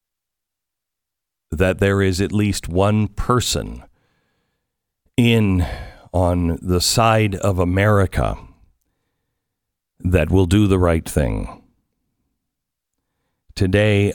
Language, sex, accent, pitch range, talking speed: English, male, American, 85-105 Hz, 85 wpm